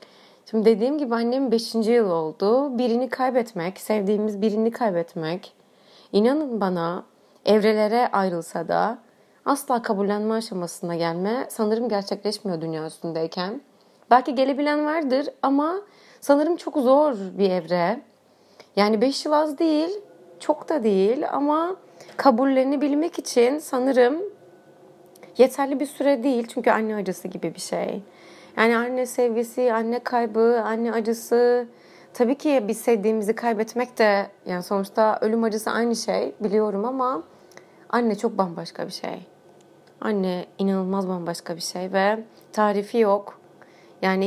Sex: female